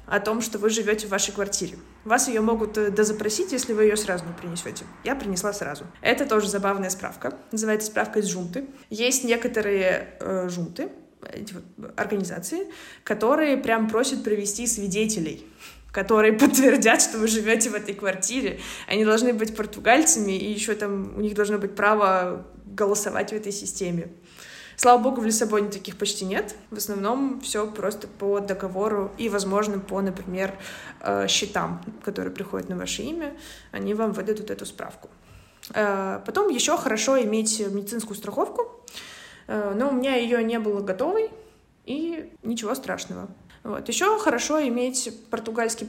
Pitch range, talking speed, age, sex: 200-240 Hz, 145 wpm, 20-39, female